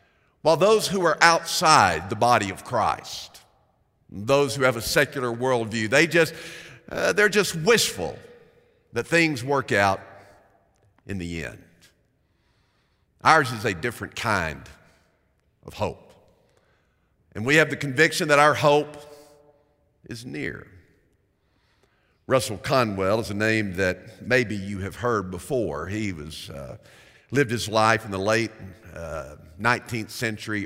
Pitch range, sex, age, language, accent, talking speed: 100-135 Hz, male, 50-69, English, American, 130 wpm